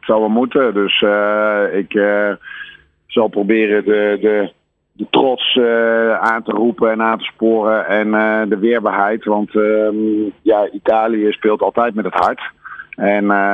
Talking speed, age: 155 wpm, 50-69